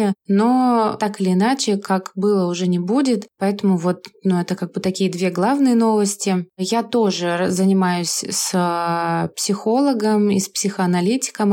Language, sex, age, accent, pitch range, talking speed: Russian, female, 20-39, native, 175-200 Hz, 140 wpm